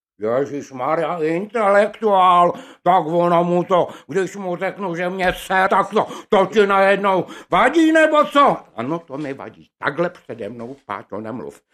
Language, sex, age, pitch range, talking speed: Czech, male, 60-79, 175-250 Hz, 150 wpm